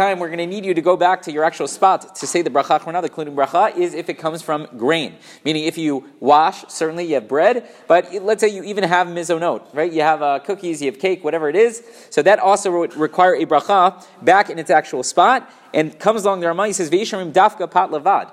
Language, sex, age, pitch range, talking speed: English, male, 30-49, 150-195 Hz, 240 wpm